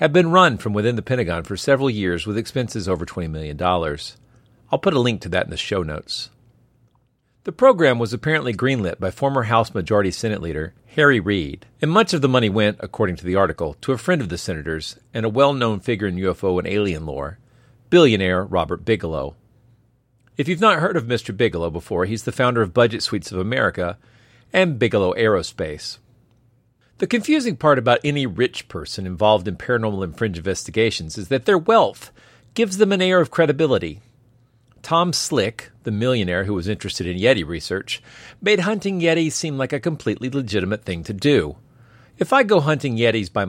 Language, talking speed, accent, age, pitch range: English, 185 wpm, American, 40-59, 100-135 Hz